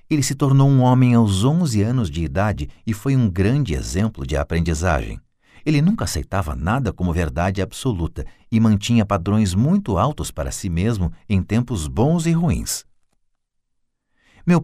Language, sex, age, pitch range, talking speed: Portuguese, male, 50-69, 85-120 Hz, 155 wpm